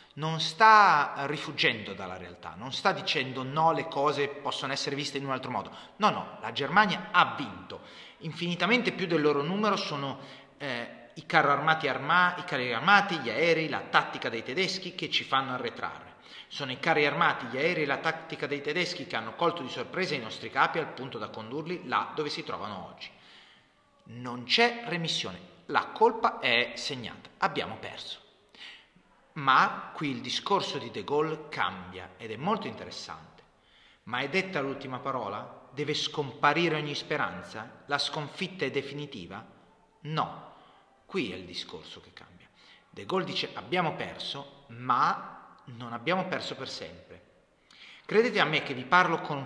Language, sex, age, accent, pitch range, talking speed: Italian, male, 30-49, native, 135-175 Hz, 165 wpm